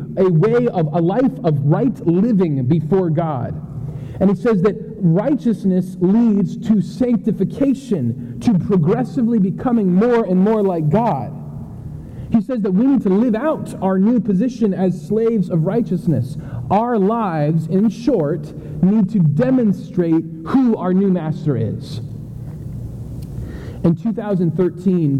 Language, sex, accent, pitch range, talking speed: English, male, American, 150-210 Hz, 130 wpm